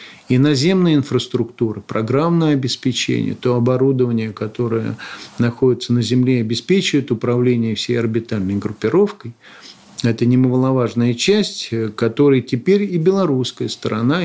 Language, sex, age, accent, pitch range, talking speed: Russian, male, 50-69, native, 115-150 Hz, 100 wpm